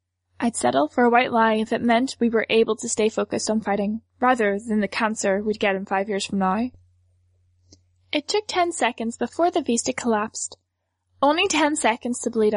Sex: female